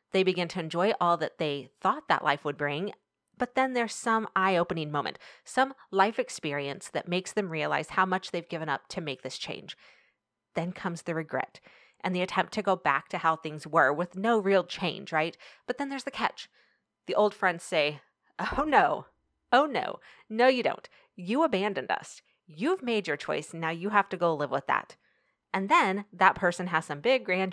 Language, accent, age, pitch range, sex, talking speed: English, American, 30-49, 155-205 Hz, female, 200 wpm